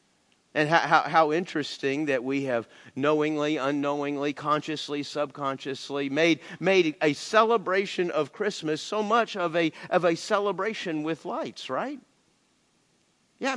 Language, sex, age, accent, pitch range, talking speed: English, male, 50-69, American, 150-245 Hz, 130 wpm